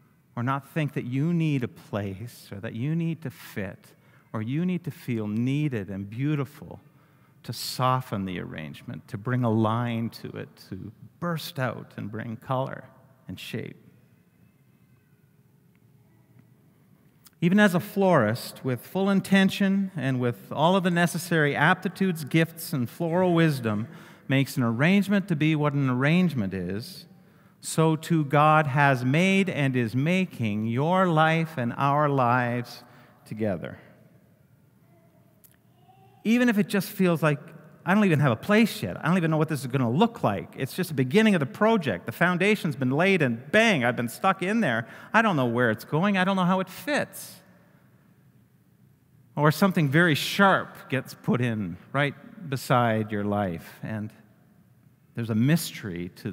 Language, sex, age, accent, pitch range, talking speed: English, male, 50-69, American, 120-175 Hz, 160 wpm